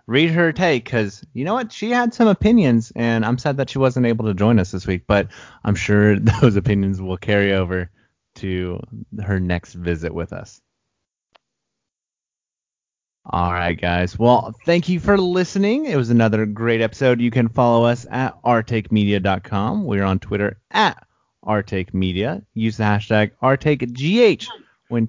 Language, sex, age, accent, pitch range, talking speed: English, male, 30-49, American, 105-140 Hz, 160 wpm